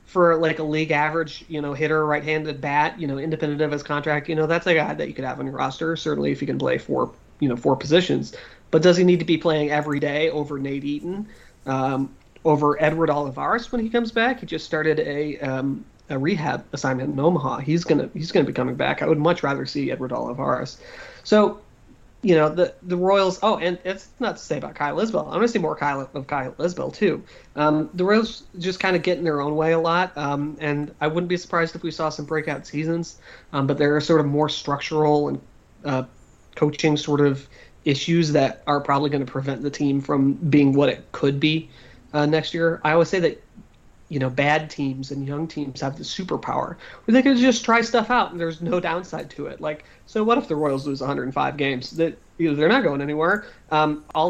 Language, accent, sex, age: English, American, male, 30-49